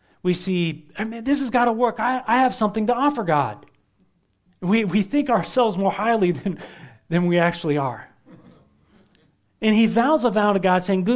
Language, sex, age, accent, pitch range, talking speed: English, male, 40-59, American, 150-215 Hz, 190 wpm